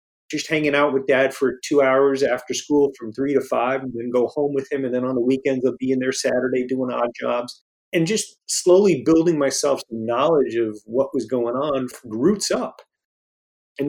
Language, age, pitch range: English, 40-59, 130-155 Hz